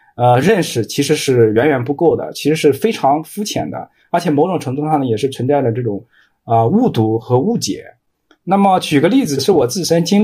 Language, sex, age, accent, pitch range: Chinese, male, 20-39, native, 130-195 Hz